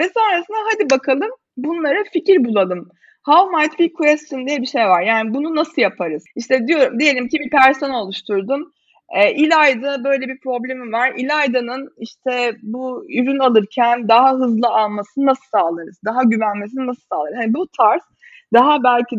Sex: female